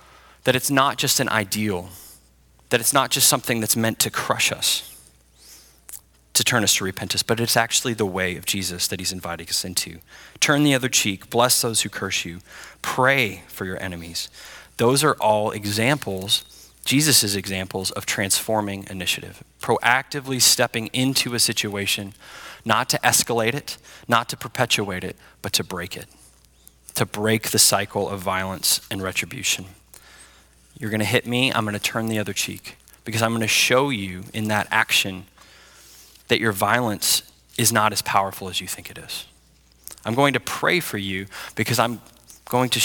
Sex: male